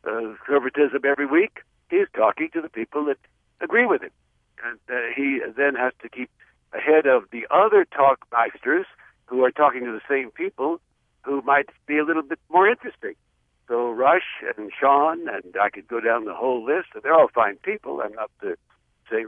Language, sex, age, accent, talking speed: English, male, 60-79, American, 190 wpm